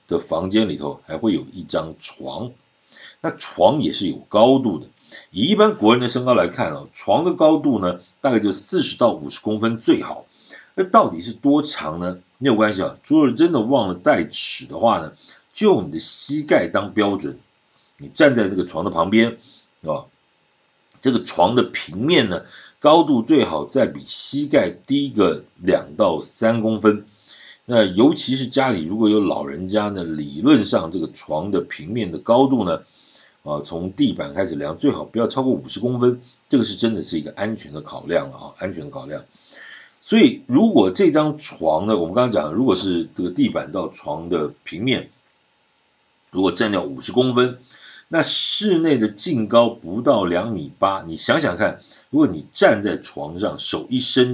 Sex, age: male, 50-69